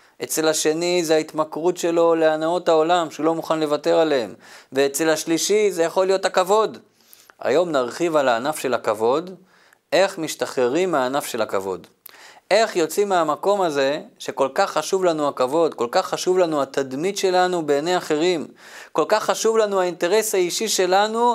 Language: Hebrew